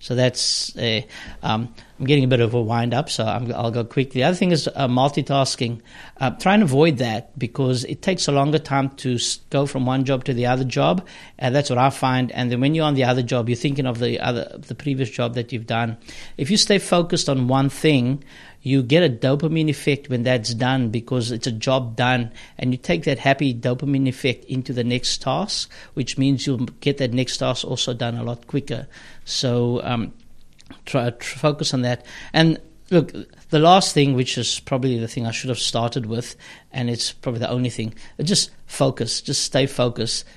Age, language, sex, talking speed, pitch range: 60-79, English, male, 215 wpm, 120-140 Hz